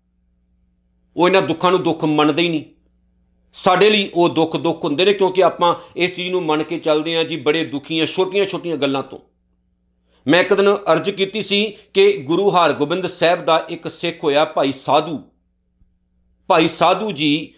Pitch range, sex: 135-185 Hz, male